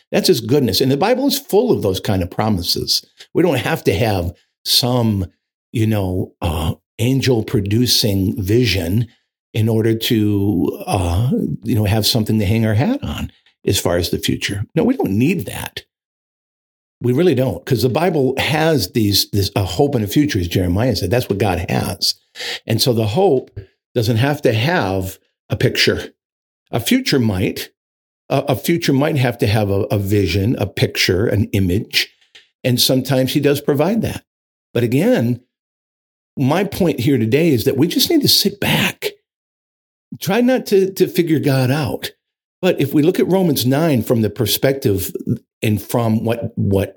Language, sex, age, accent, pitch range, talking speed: English, male, 50-69, American, 105-145 Hz, 170 wpm